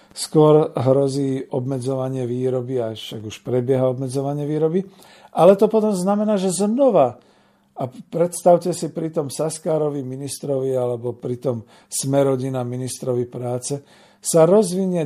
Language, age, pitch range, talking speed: Slovak, 50-69, 125-170 Hz, 115 wpm